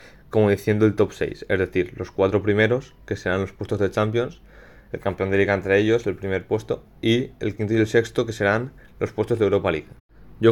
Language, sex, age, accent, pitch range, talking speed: Spanish, male, 20-39, Spanish, 95-105 Hz, 220 wpm